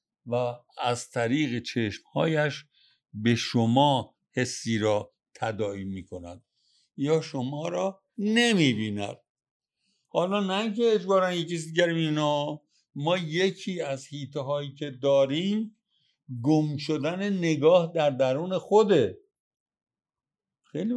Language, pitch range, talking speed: Persian, 125-175 Hz, 105 wpm